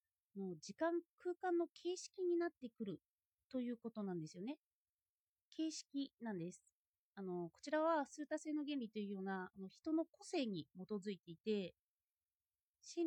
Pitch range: 200-310 Hz